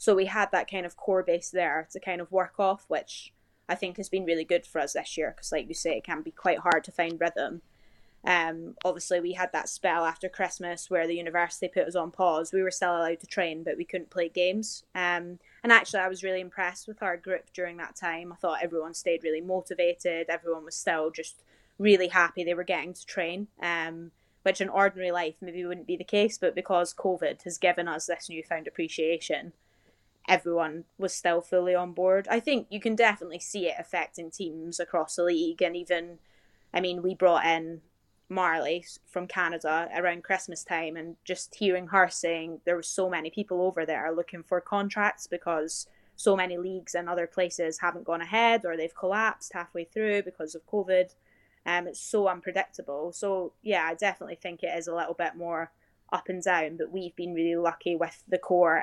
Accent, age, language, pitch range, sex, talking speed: British, 20-39, English, 165-185 Hz, female, 205 wpm